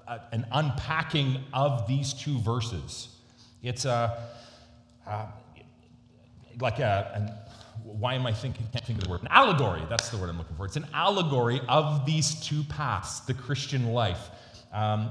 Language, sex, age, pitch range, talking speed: English, male, 30-49, 110-130 Hz, 165 wpm